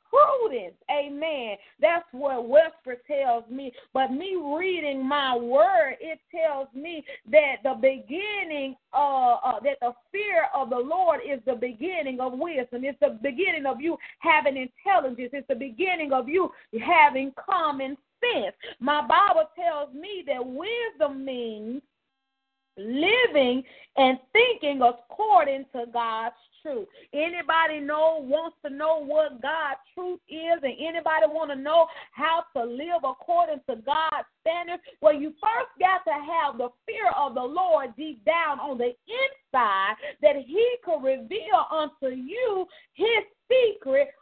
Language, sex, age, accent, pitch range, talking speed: English, female, 40-59, American, 265-340 Hz, 140 wpm